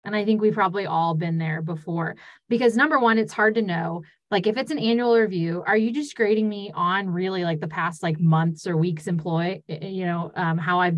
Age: 20-39